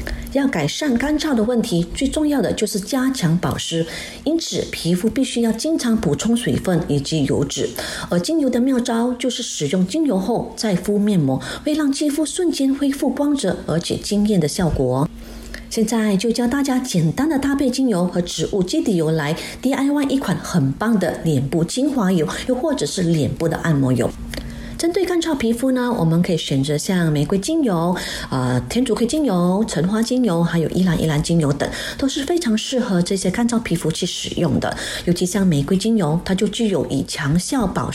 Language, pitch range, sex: Chinese, 165-250 Hz, female